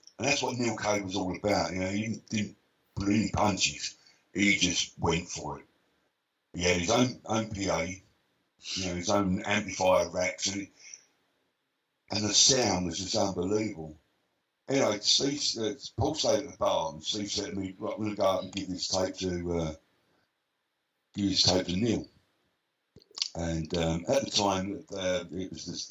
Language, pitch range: English, 90-105 Hz